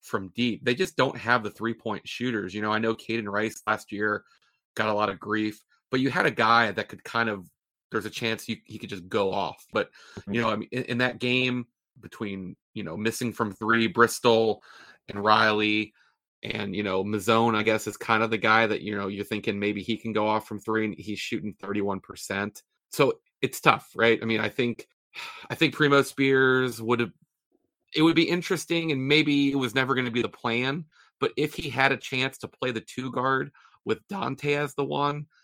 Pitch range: 105-130 Hz